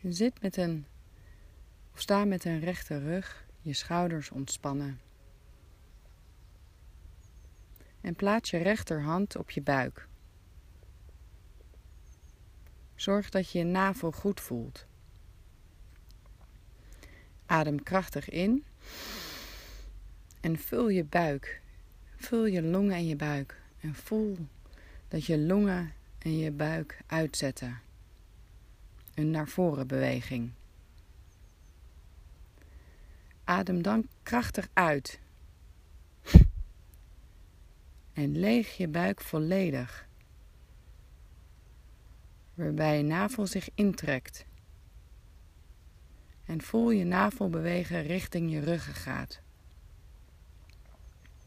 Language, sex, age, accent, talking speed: Dutch, female, 40-59, Dutch, 85 wpm